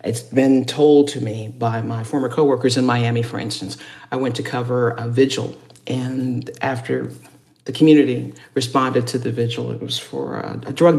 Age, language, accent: 50-69, English, American